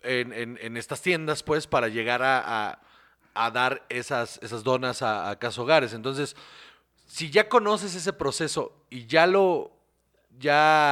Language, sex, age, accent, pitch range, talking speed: Spanish, male, 40-59, Mexican, 135-185 Hz, 160 wpm